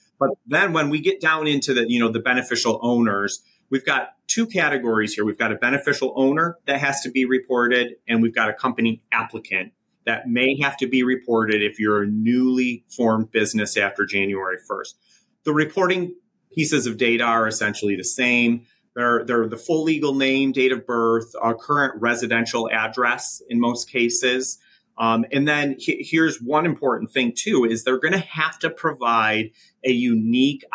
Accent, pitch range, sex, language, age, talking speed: American, 110-135 Hz, male, English, 30-49, 180 wpm